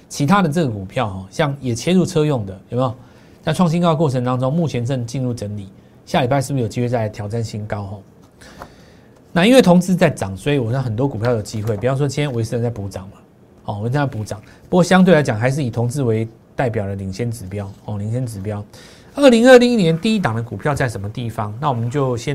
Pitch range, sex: 110-160 Hz, male